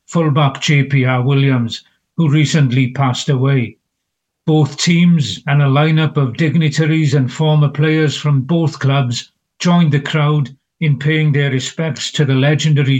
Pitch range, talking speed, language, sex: 140-160 Hz, 140 wpm, English, male